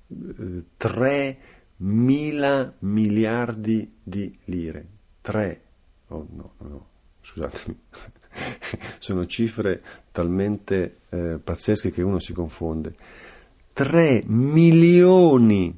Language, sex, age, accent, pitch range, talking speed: Italian, male, 50-69, native, 85-115 Hz, 85 wpm